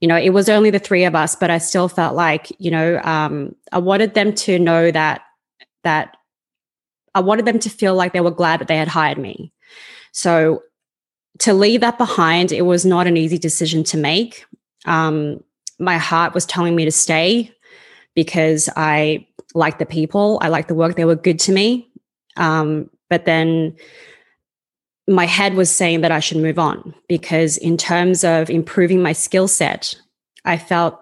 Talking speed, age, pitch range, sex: 185 wpm, 20-39, 160-195 Hz, female